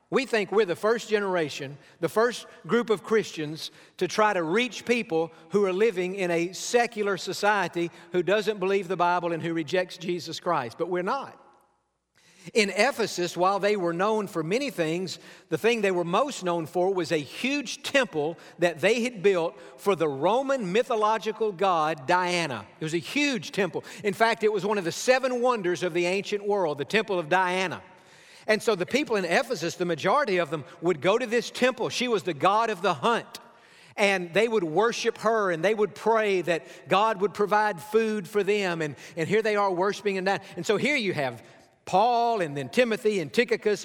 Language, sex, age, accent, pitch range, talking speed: English, male, 50-69, American, 175-220 Hz, 195 wpm